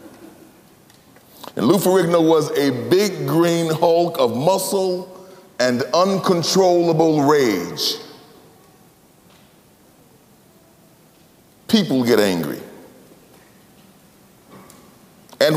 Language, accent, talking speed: English, American, 65 wpm